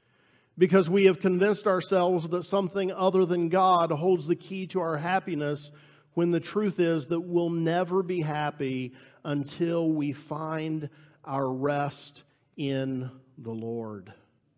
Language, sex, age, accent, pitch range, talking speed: English, male, 50-69, American, 135-180 Hz, 135 wpm